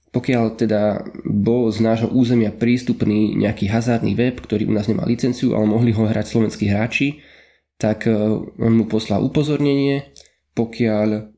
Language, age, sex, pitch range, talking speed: Slovak, 20-39, male, 105-120 Hz, 140 wpm